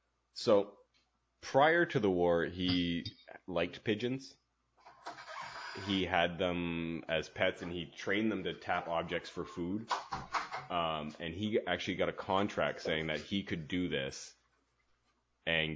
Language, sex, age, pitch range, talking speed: English, male, 30-49, 80-100 Hz, 135 wpm